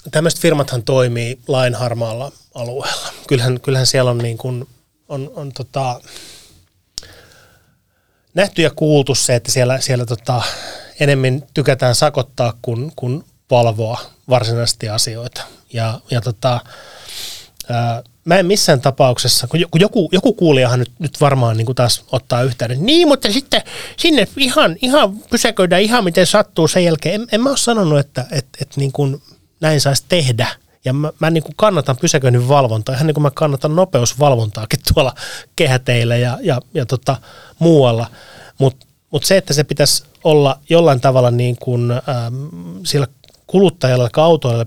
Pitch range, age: 120-150 Hz, 30-49